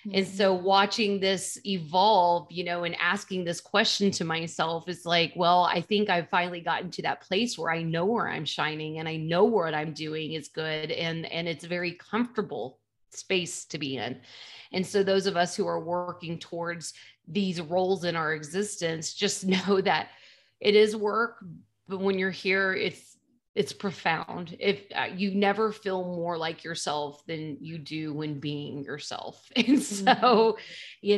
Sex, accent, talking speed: female, American, 175 wpm